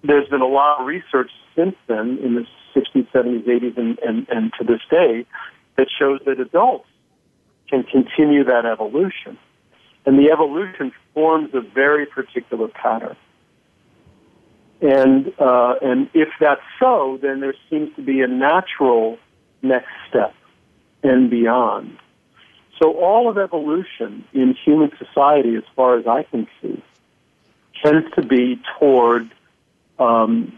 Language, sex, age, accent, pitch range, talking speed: English, male, 50-69, American, 125-150 Hz, 135 wpm